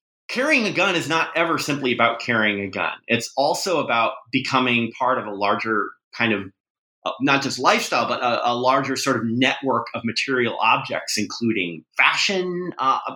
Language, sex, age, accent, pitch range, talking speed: English, male, 30-49, American, 115-155 Hz, 170 wpm